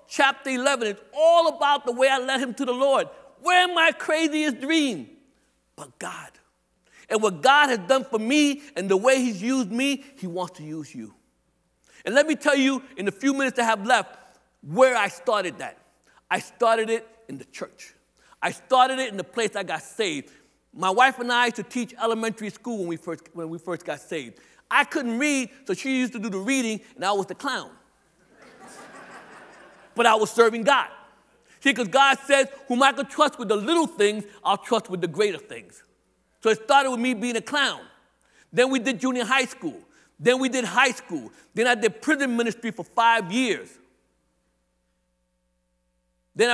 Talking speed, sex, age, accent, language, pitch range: 195 wpm, male, 60-79, American, English, 195-270 Hz